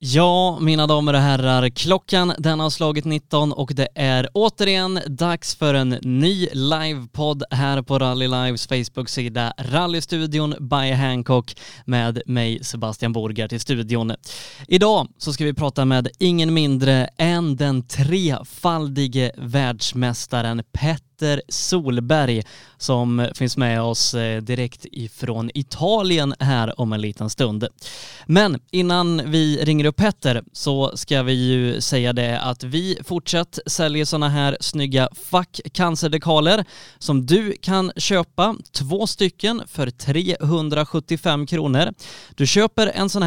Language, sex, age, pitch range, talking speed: Swedish, male, 20-39, 130-170 Hz, 130 wpm